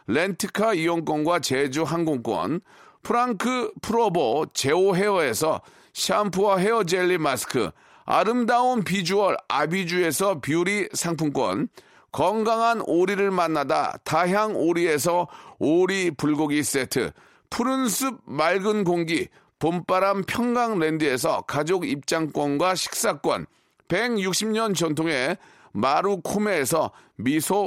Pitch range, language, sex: 165-225 Hz, Korean, male